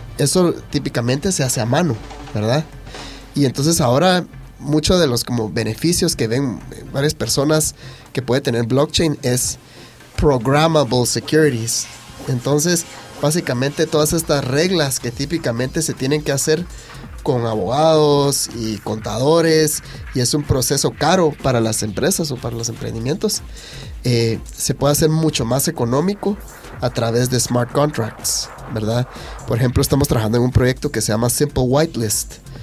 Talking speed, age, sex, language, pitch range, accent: 145 wpm, 30-49, male, English, 120-150 Hz, Mexican